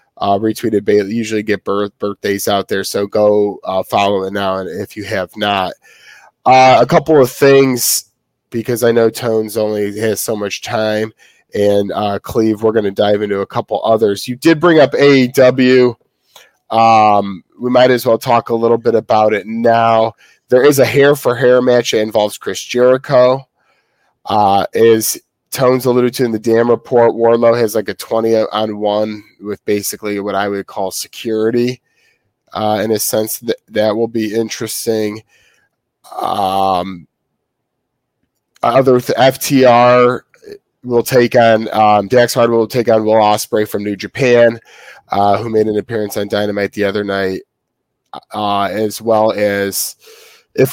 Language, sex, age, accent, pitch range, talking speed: English, male, 20-39, American, 105-125 Hz, 160 wpm